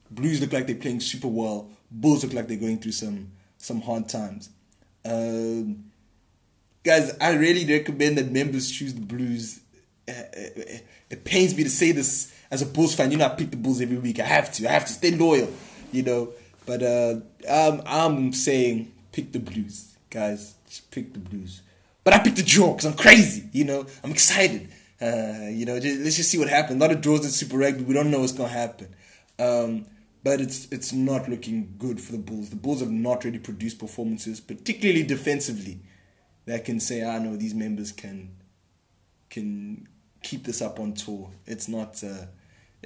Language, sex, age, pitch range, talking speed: English, male, 20-39, 105-145 Hz, 195 wpm